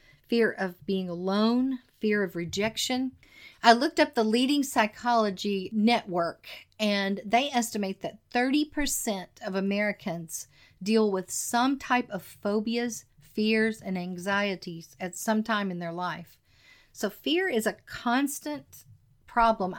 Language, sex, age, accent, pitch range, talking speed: English, female, 40-59, American, 185-235 Hz, 125 wpm